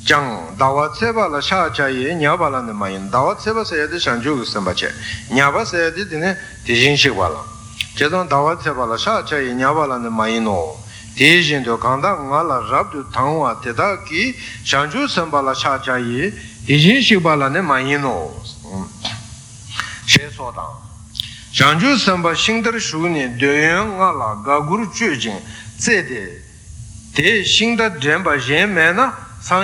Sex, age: male, 60-79